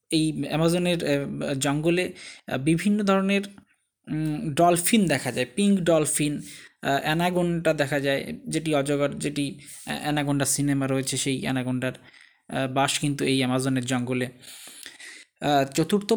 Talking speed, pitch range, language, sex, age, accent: 80 wpm, 140-190 Hz, Bengali, male, 20-39, native